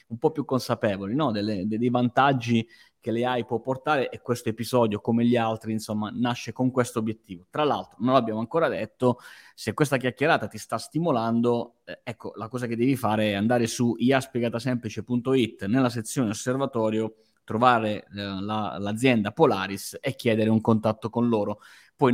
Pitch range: 115-135 Hz